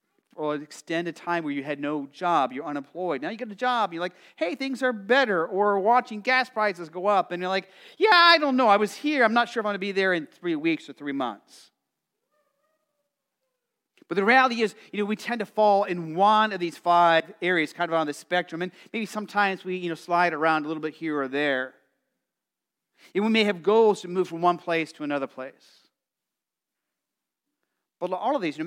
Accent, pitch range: American, 165-240 Hz